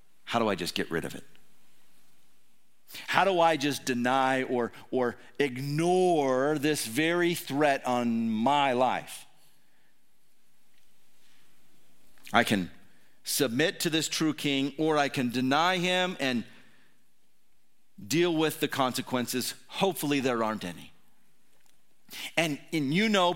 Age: 50-69